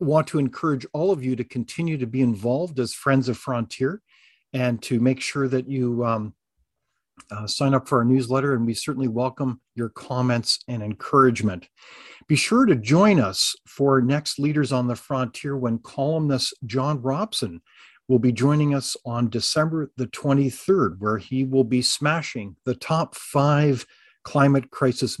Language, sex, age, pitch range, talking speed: English, male, 50-69, 120-150 Hz, 165 wpm